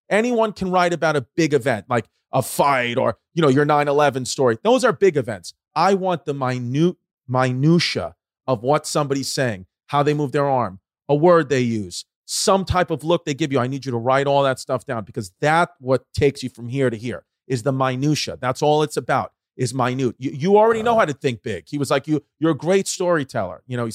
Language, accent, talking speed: English, American, 230 wpm